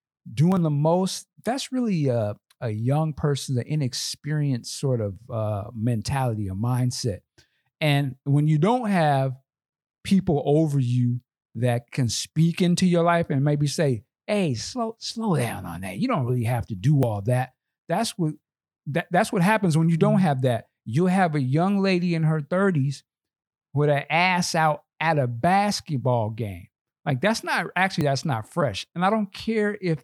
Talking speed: 175 wpm